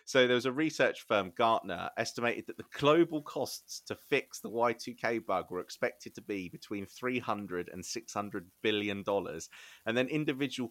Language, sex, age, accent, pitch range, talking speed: English, male, 30-49, British, 100-125 Hz, 165 wpm